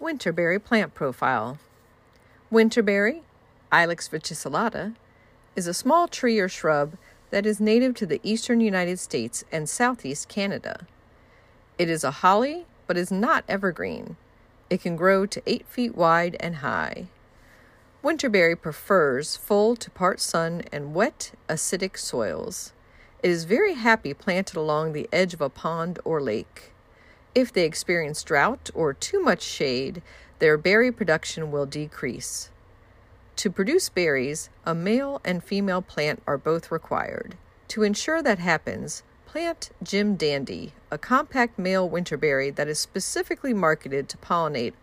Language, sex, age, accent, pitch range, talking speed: English, female, 50-69, American, 155-225 Hz, 140 wpm